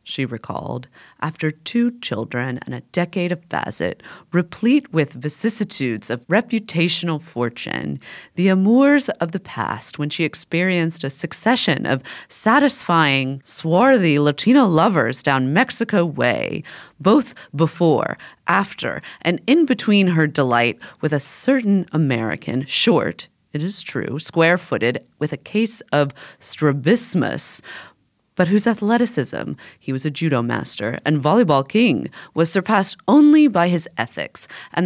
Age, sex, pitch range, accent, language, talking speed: 30-49, female, 140-210 Hz, American, English, 125 wpm